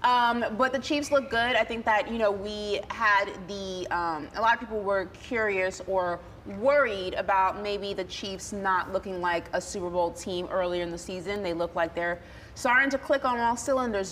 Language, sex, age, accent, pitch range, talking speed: English, female, 30-49, American, 190-255 Hz, 205 wpm